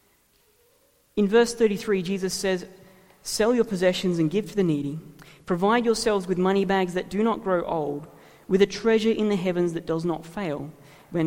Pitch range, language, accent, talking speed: 165-205 Hz, English, Australian, 180 wpm